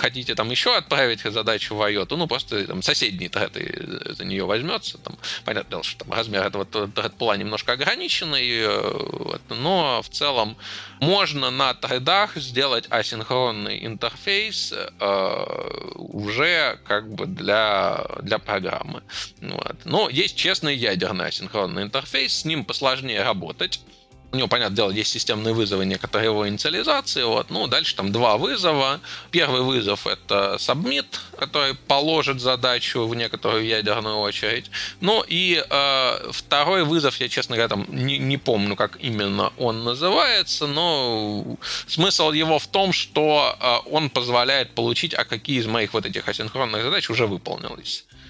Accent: native